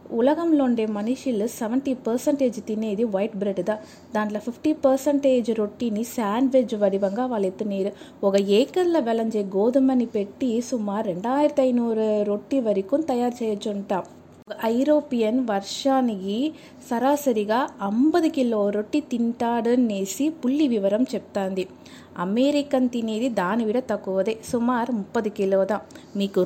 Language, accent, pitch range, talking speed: Telugu, native, 200-255 Hz, 105 wpm